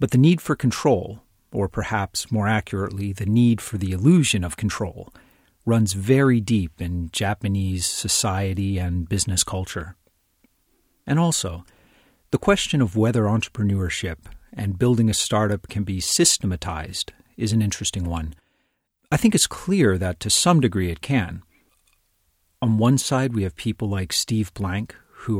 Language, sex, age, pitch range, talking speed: English, male, 40-59, 95-115 Hz, 150 wpm